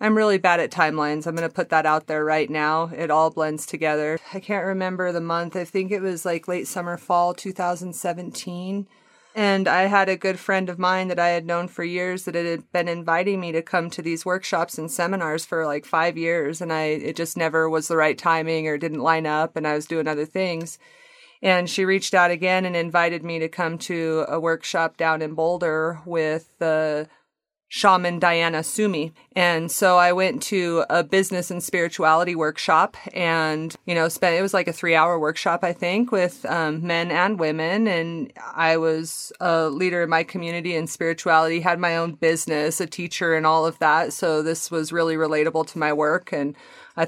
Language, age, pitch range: English, 30-49, 160-185 Hz